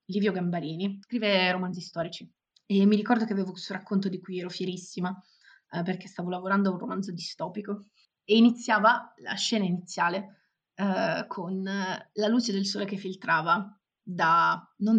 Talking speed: 155 wpm